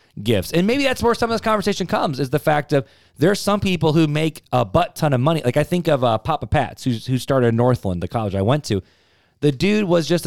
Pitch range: 115-155 Hz